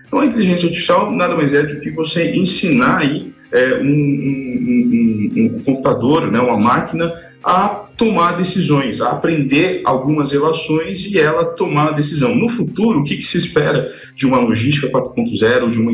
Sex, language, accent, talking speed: male, Portuguese, Brazilian, 160 wpm